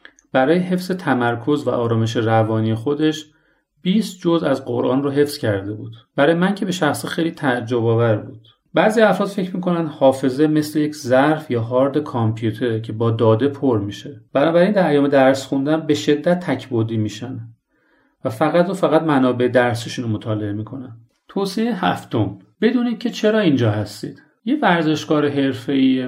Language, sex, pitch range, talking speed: Persian, male, 120-155 Hz, 155 wpm